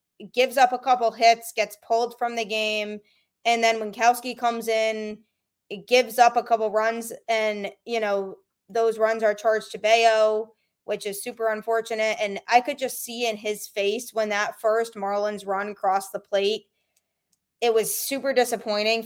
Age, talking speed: 20-39, 175 wpm